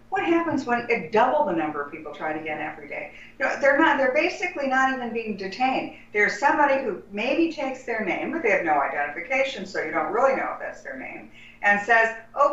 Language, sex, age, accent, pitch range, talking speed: English, female, 50-69, American, 205-290 Hz, 235 wpm